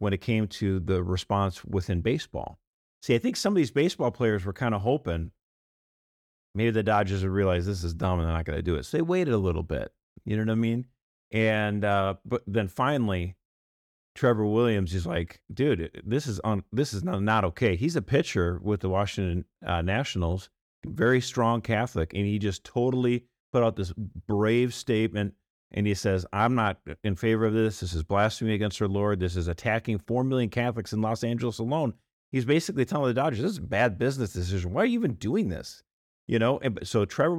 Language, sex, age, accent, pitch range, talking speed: English, male, 40-59, American, 95-130 Hz, 205 wpm